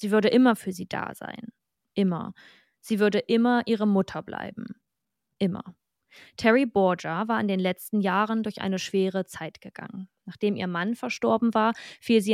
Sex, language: female, German